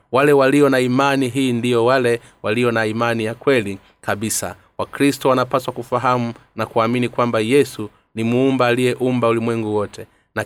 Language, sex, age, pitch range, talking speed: Swahili, male, 30-49, 115-130 Hz, 150 wpm